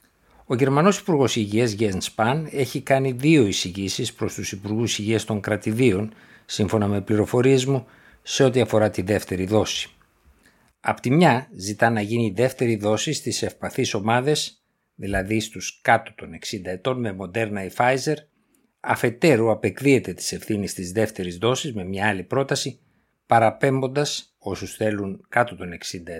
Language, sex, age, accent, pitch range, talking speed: Greek, male, 60-79, native, 100-130 Hz, 145 wpm